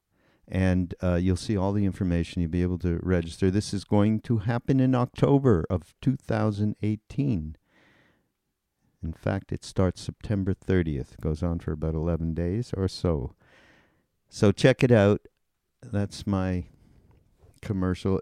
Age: 50-69